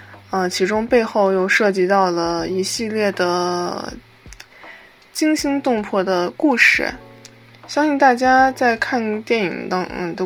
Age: 20-39